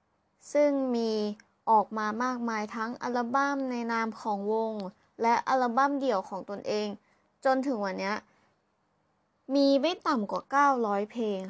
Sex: female